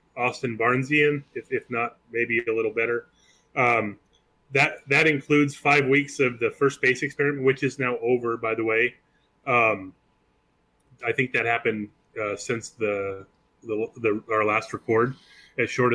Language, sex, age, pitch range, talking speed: English, male, 30-49, 115-135 Hz, 160 wpm